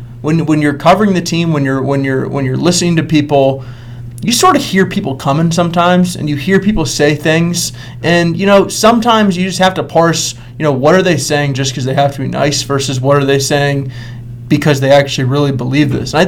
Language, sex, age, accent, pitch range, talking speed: English, male, 20-39, American, 135-150 Hz, 230 wpm